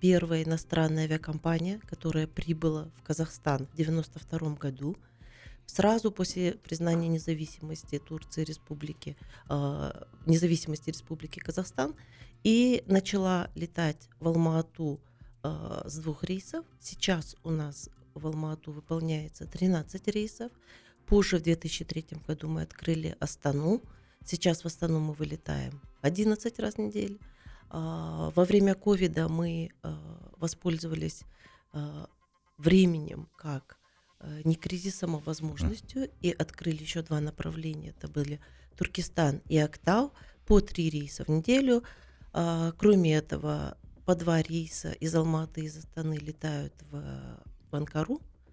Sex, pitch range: female, 150-175 Hz